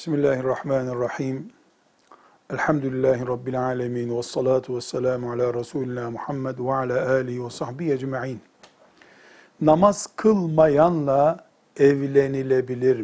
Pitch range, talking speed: 130-180 Hz, 85 wpm